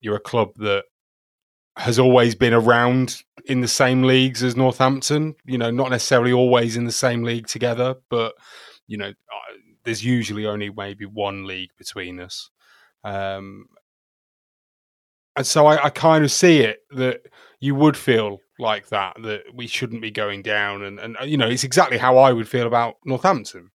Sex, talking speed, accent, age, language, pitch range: male, 175 wpm, British, 30-49, English, 105-125 Hz